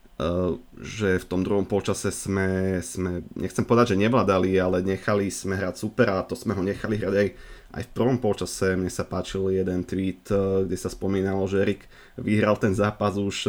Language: Slovak